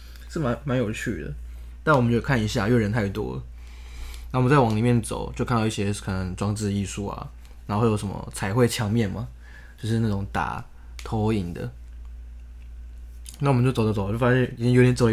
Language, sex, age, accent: Chinese, male, 20-39, native